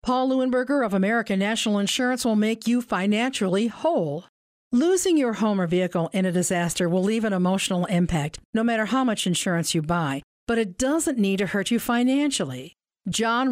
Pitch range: 190-255 Hz